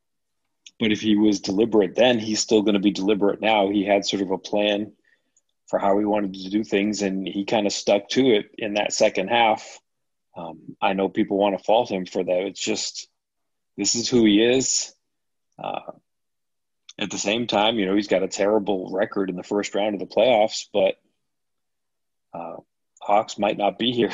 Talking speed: 200 wpm